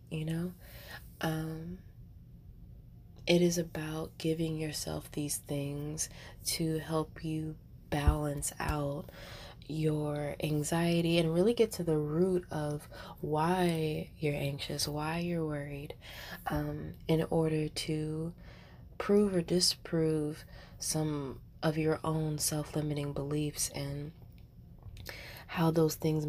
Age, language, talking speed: 20-39, English, 105 wpm